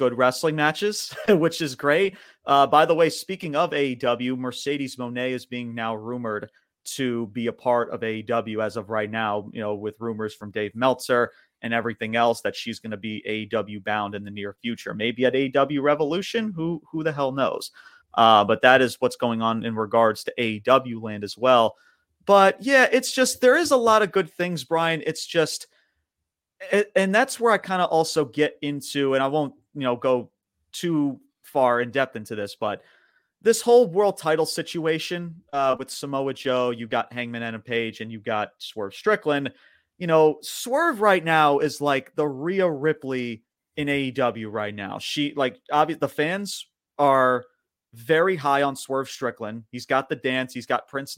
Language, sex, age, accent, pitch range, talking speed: English, male, 30-49, American, 115-160 Hz, 190 wpm